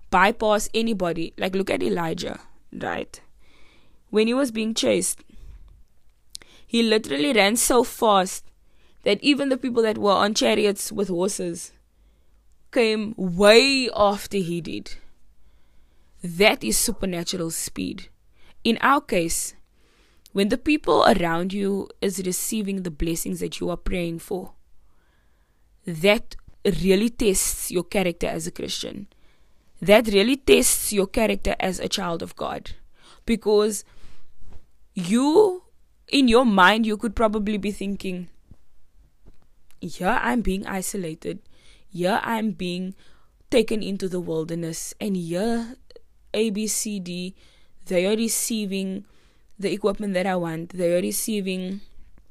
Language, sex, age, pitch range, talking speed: English, female, 20-39, 175-220 Hz, 125 wpm